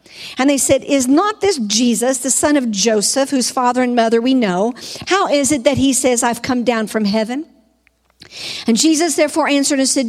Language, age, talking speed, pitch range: English, 50-69, 200 wpm, 215-275 Hz